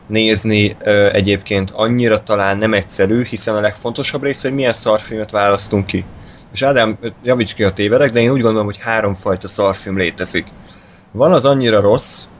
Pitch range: 95-110 Hz